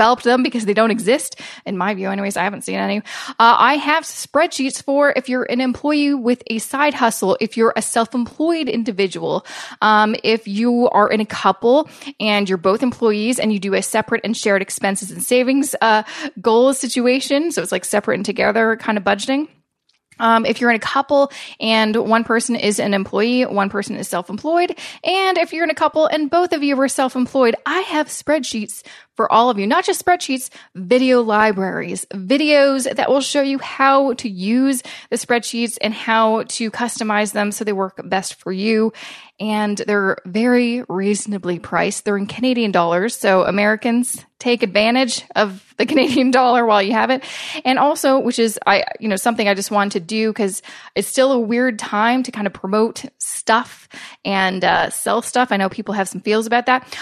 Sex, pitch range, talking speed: female, 205-265 Hz, 190 wpm